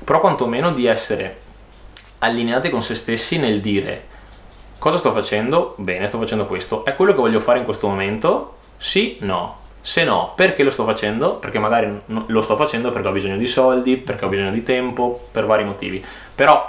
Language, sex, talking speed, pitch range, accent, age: Italian, male, 185 wpm, 105-130 Hz, native, 20-39